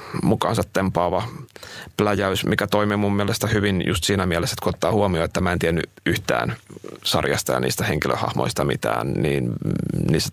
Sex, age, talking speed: male, 30-49, 150 wpm